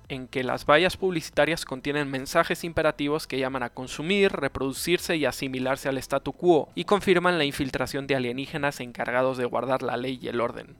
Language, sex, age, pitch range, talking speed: Spanish, male, 20-39, 130-150 Hz, 180 wpm